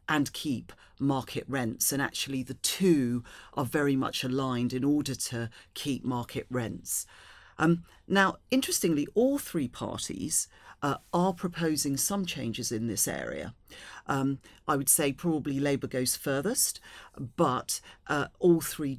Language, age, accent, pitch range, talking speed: English, 40-59, British, 125-160 Hz, 140 wpm